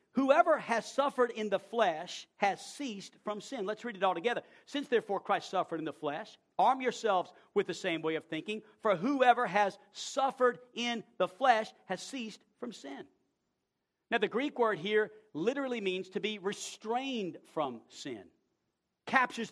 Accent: American